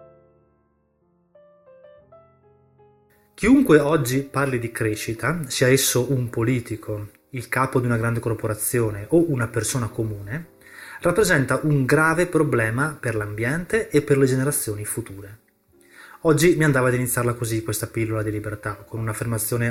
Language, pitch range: Italian, 110-150 Hz